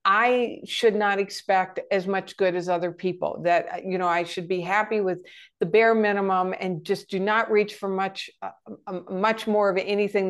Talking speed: 190 wpm